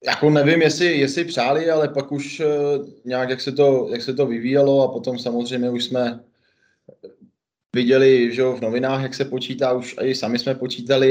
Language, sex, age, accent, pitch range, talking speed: Czech, male, 20-39, native, 110-125 Hz, 180 wpm